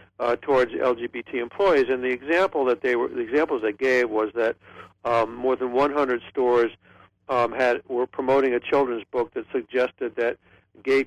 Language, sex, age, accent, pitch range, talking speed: English, male, 60-79, American, 115-145 Hz, 175 wpm